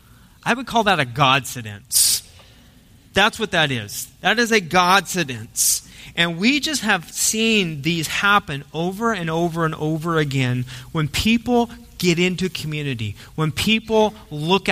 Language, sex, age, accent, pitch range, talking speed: English, male, 30-49, American, 140-200 Hz, 145 wpm